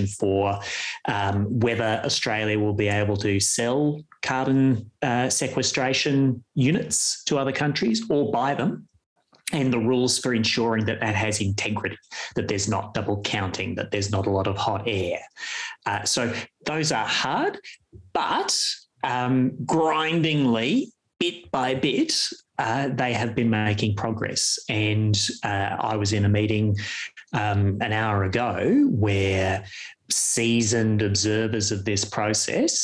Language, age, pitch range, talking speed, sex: English, 30-49, 105-125 Hz, 135 wpm, male